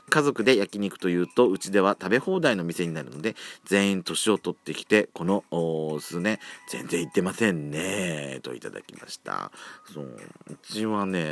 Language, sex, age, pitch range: Japanese, male, 40-59, 80-120 Hz